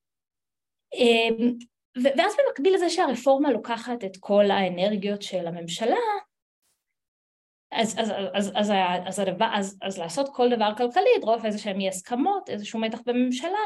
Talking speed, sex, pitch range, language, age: 135 wpm, female, 175-260 Hz, Hebrew, 20-39